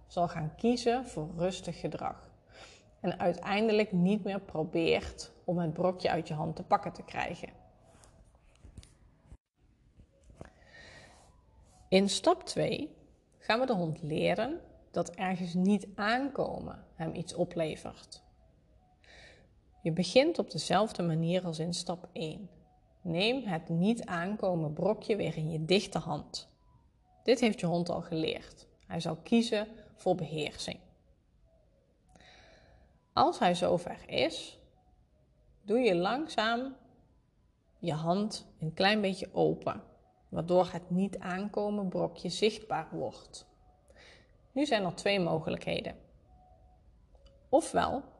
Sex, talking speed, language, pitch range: female, 115 wpm, Dutch, 170-215 Hz